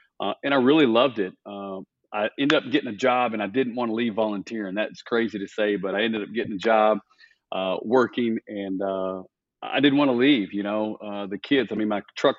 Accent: American